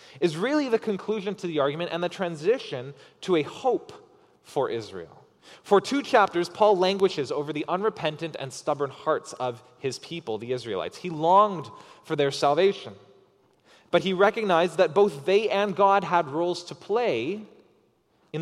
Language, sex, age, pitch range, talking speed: English, male, 20-39, 135-200 Hz, 160 wpm